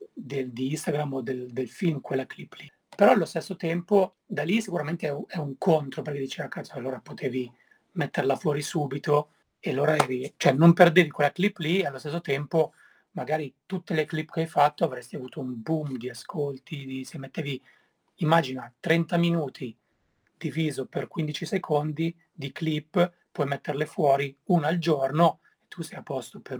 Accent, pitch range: native, 135-170 Hz